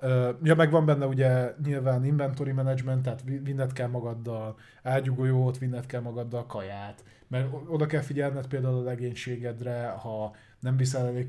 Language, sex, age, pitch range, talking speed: Hungarian, male, 20-39, 115-135 Hz, 150 wpm